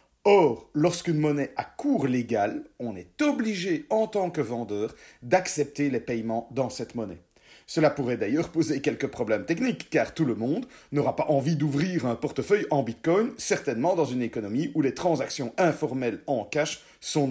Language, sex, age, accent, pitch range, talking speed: French, male, 40-59, French, 125-165 Hz, 170 wpm